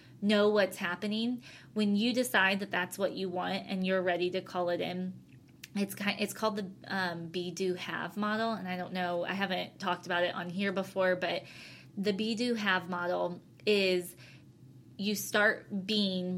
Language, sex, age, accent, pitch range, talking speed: English, female, 20-39, American, 180-205 Hz, 185 wpm